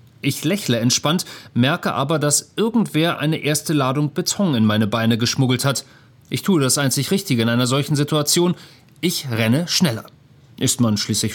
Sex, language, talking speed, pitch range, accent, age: male, German, 165 wpm, 125-160 Hz, German, 40-59